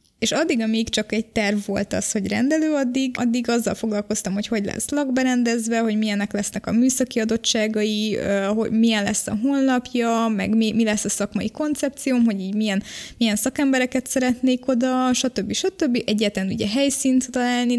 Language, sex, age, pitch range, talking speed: Hungarian, female, 20-39, 200-245 Hz, 165 wpm